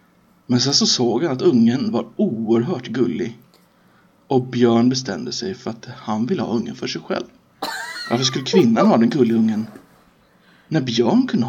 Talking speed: 170 wpm